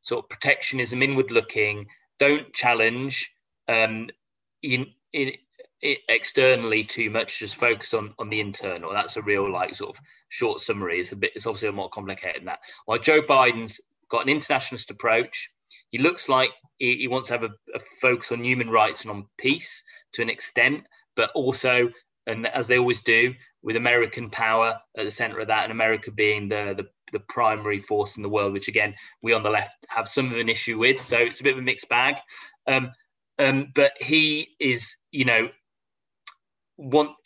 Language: English